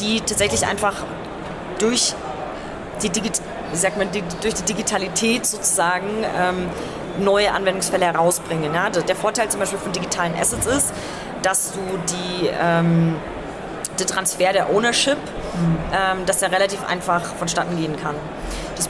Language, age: German, 20-39